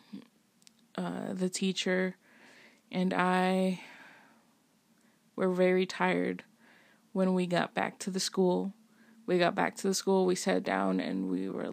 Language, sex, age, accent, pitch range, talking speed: English, female, 20-39, American, 185-230 Hz, 140 wpm